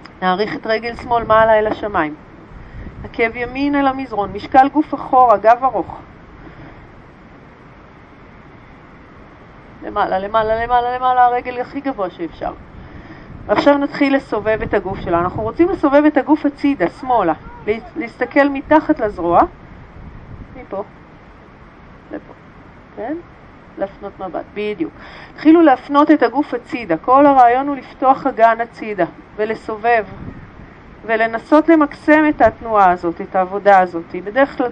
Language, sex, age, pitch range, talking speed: Hebrew, female, 40-59, 205-265 Hz, 120 wpm